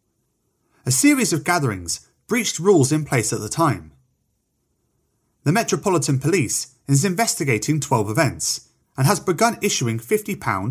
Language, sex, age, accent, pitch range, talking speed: English, male, 30-49, British, 115-185 Hz, 130 wpm